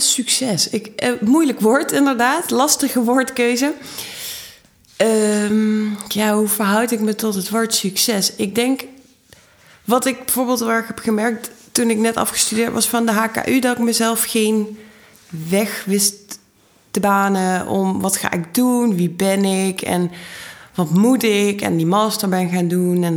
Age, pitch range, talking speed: 20-39, 185-230 Hz, 160 wpm